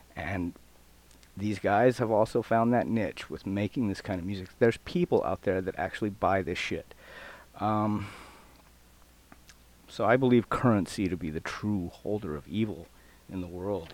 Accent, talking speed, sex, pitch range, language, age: American, 165 wpm, male, 90-125 Hz, English, 40-59